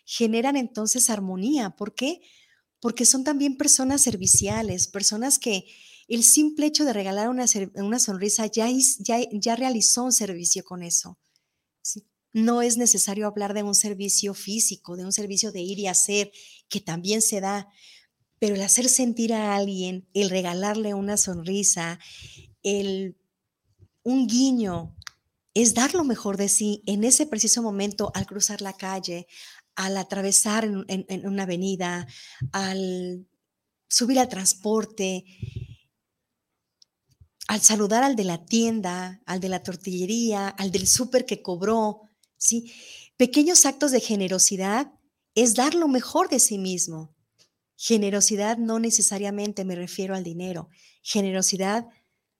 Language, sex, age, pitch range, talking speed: Spanish, female, 40-59, 185-230 Hz, 140 wpm